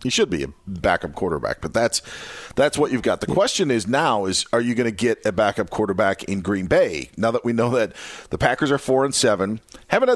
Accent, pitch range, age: American, 95-125 Hz, 40-59